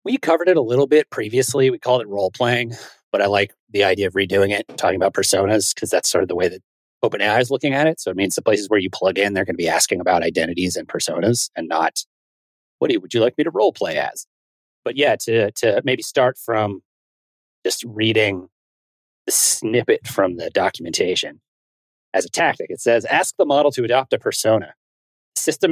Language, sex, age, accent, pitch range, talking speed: English, male, 30-49, American, 100-165 Hz, 210 wpm